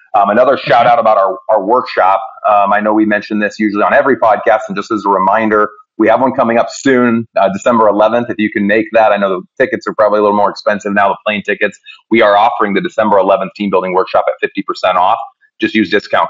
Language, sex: English, male